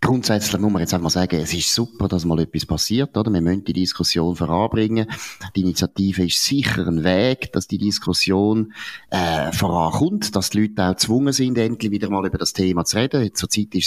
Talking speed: 210 wpm